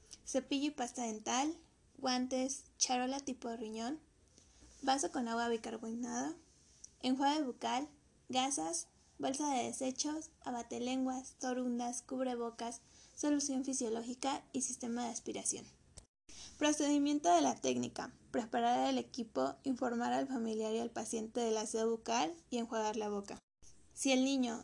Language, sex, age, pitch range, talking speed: Spanish, female, 10-29, 225-260 Hz, 125 wpm